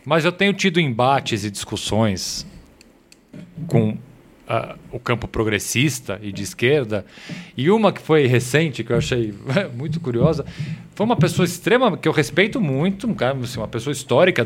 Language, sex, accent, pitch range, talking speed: Portuguese, male, Brazilian, 130-200 Hz, 160 wpm